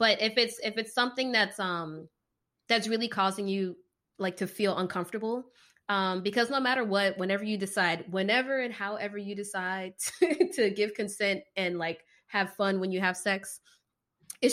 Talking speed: 175 wpm